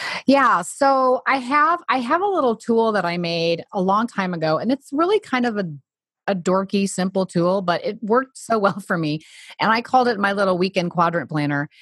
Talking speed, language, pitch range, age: 215 wpm, English, 165-225 Hz, 30-49